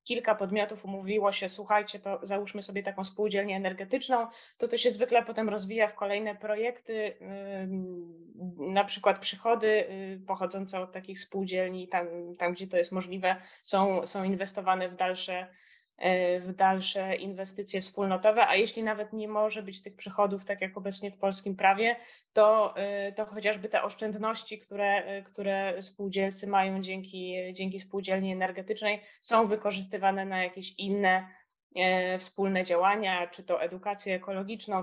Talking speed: 140 wpm